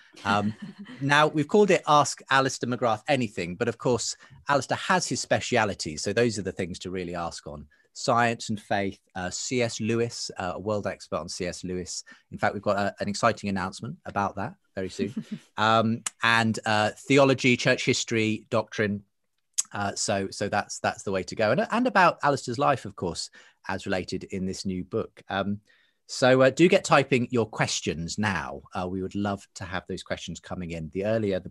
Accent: British